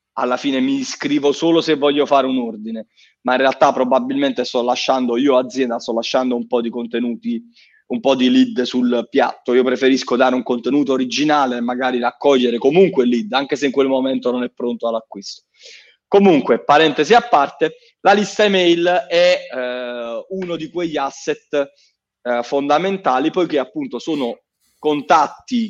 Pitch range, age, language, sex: 125-170 Hz, 30-49, Italian, male